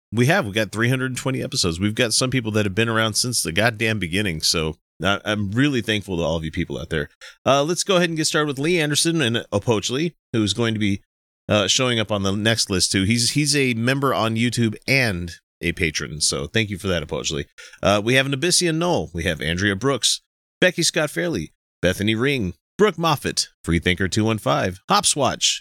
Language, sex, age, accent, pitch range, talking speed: English, male, 30-49, American, 90-135 Hz, 205 wpm